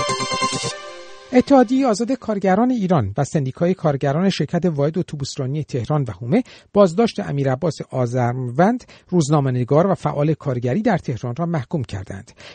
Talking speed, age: 120 wpm, 50-69